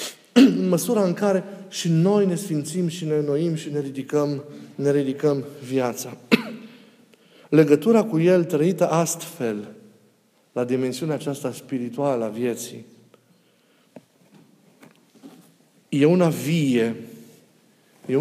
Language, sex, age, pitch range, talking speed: Romanian, male, 50-69, 145-200 Hz, 105 wpm